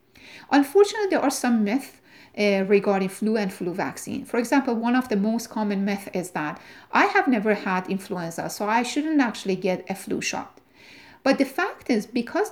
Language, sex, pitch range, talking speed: English, female, 195-270 Hz, 185 wpm